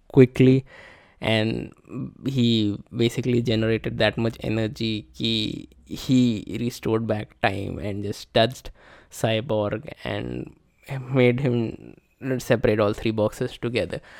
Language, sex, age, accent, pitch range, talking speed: Hindi, male, 20-39, native, 115-145 Hz, 110 wpm